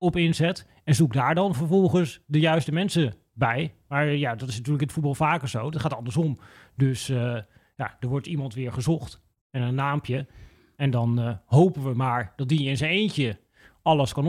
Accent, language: Dutch, Dutch